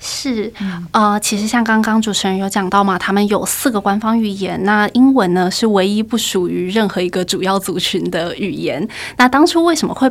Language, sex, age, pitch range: Chinese, female, 20-39, 190-220 Hz